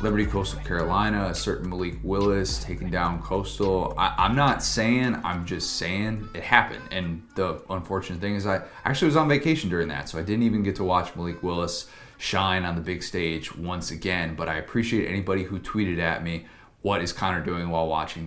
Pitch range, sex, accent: 85-105 Hz, male, American